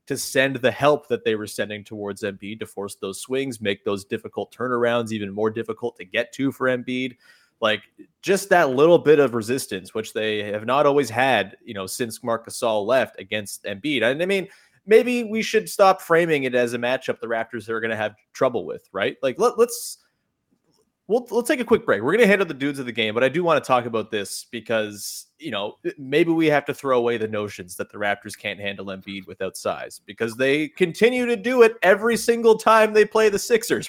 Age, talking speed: 20-39, 225 wpm